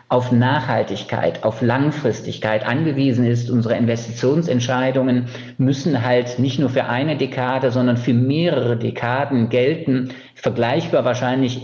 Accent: German